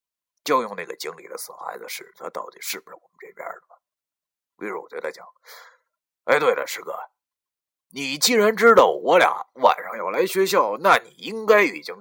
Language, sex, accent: Chinese, male, native